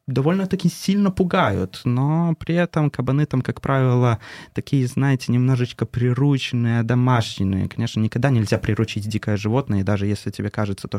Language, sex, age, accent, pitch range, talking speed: Russian, male, 20-39, native, 105-135 Hz, 140 wpm